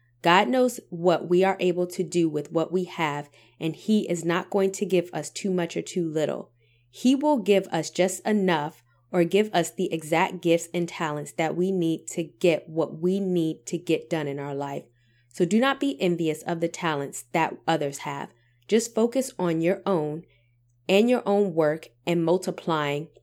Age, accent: 30-49, American